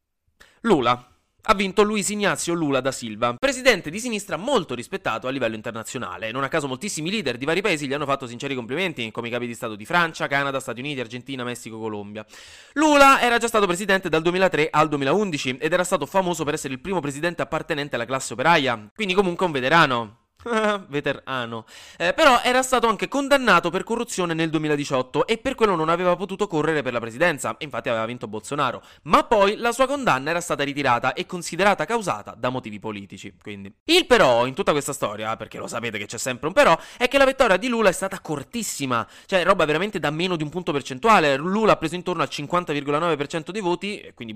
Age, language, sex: 20-39, Italian, male